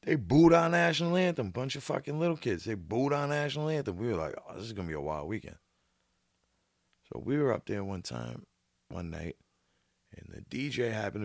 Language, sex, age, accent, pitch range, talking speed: English, male, 30-49, American, 85-115 Hz, 215 wpm